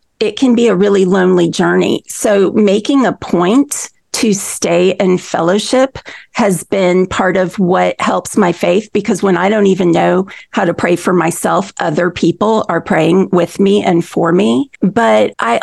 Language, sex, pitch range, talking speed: English, female, 180-220 Hz, 175 wpm